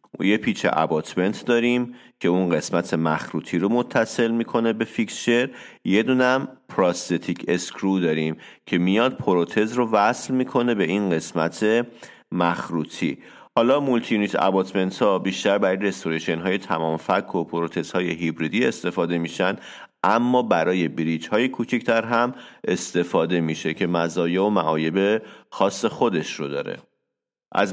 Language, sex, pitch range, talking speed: Persian, male, 85-110 Hz, 135 wpm